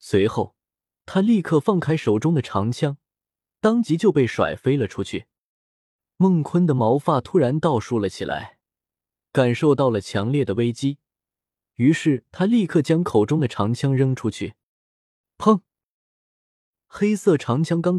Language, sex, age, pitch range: Chinese, male, 20-39, 110-165 Hz